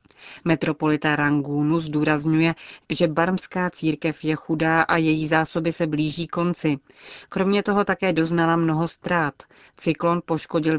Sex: female